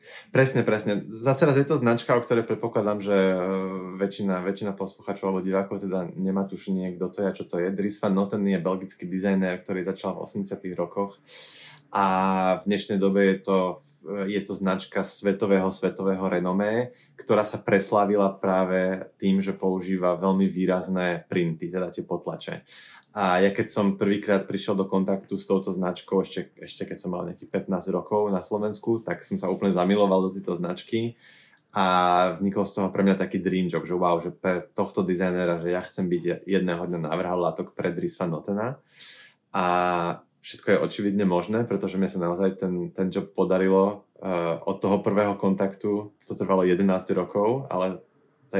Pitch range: 95-100 Hz